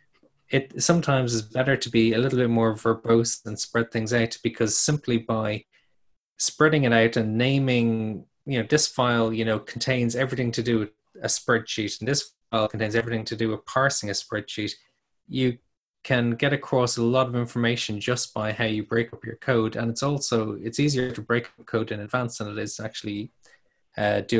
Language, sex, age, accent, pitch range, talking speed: English, male, 20-39, Irish, 110-125 Hz, 200 wpm